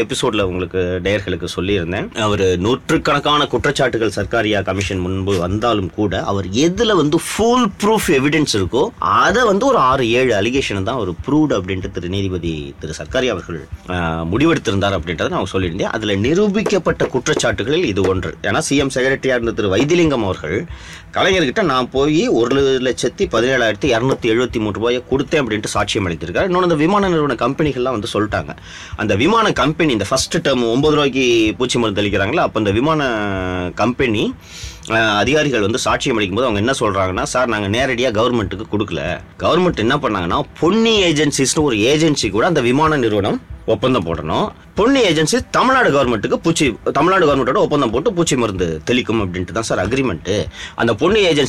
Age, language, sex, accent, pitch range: 30-49, Tamil, male, native, 100-145 Hz